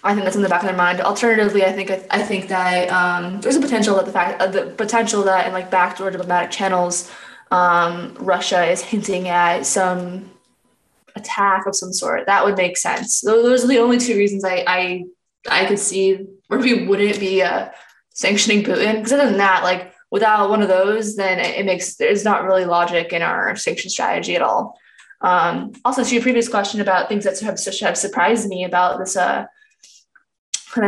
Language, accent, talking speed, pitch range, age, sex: English, American, 210 wpm, 185-215 Hz, 20-39, female